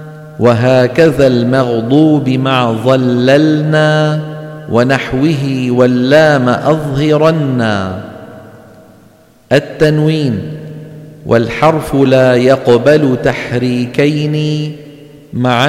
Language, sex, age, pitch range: Arabic, male, 50-69, 125-150 Hz